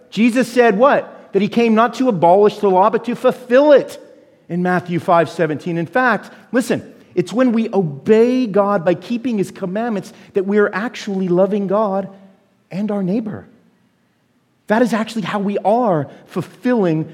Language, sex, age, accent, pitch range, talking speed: English, male, 40-59, American, 120-195 Hz, 165 wpm